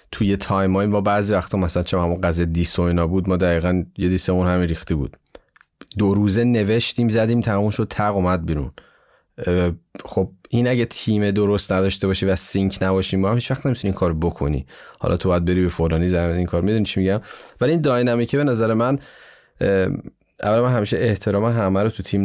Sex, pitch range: male, 85-115 Hz